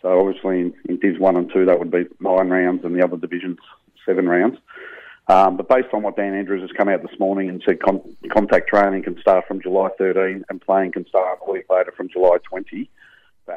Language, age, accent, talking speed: English, 40-59, Australian, 230 wpm